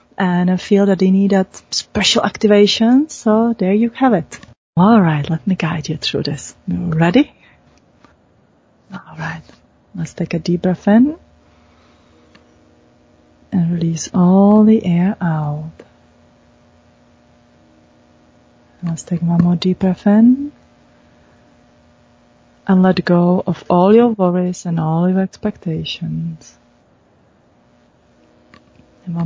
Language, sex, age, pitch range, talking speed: English, female, 30-49, 160-190 Hz, 115 wpm